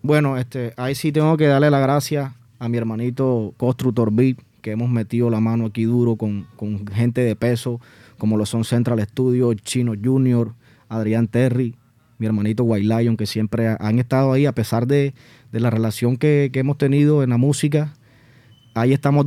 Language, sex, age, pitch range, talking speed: Spanish, male, 20-39, 120-150 Hz, 185 wpm